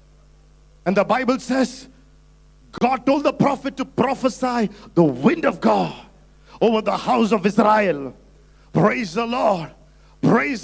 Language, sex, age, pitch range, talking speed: English, male, 50-69, 215-315 Hz, 130 wpm